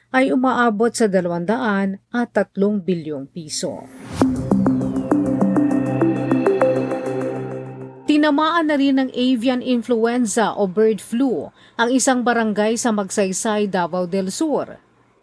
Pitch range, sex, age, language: 185-240 Hz, female, 40-59, Filipino